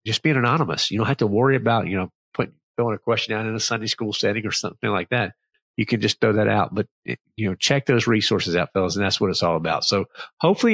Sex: male